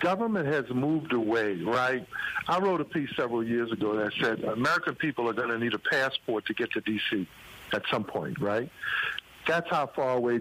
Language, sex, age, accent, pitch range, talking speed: English, male, 50-69, American, 120-175 Hz, 195 wpm